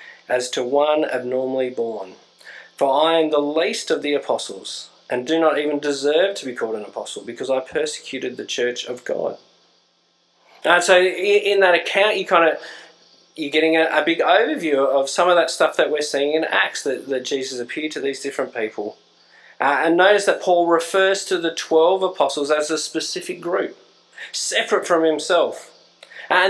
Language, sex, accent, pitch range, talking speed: English, male, Australian, 145-195 Hz, 185 wpm